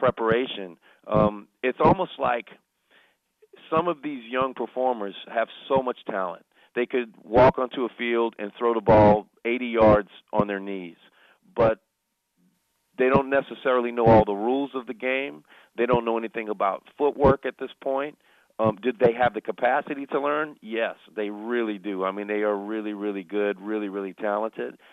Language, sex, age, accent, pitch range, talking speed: English, male, 40-59, American, 105-125 Hz, 170 wpm